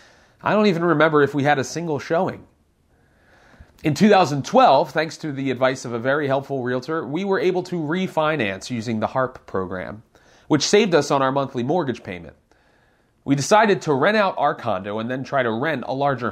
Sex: male